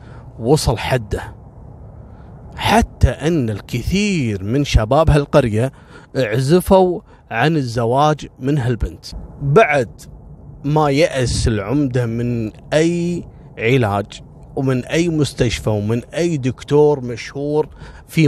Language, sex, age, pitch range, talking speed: Arabic, male, 30-49, 115-170 Hz, 90 wpm